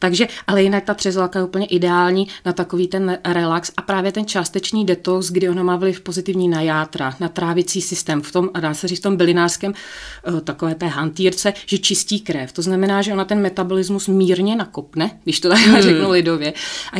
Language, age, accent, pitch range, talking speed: Czech, 30-49, native, 165-190 Hz, 200 wpm